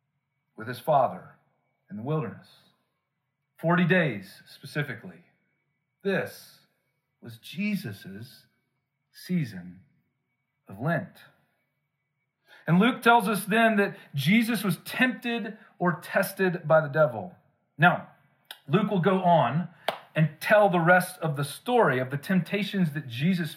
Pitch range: 150-190 Hz